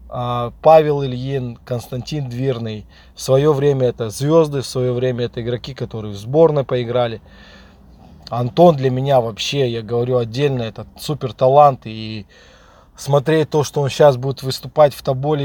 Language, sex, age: Russian, male, 20-39